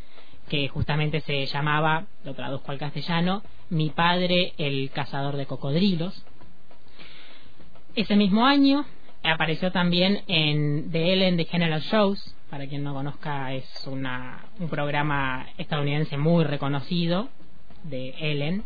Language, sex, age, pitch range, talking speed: Spanish, female, 20-39, 145-205 Hz, 120 wpm